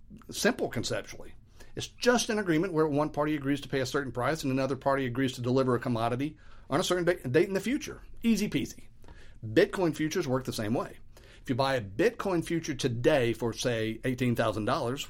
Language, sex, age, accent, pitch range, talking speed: English, male, 50-69, American, 120-165 Hz, 190 wpm